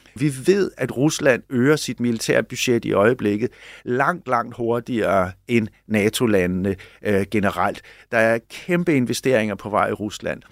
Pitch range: 115-140 Hz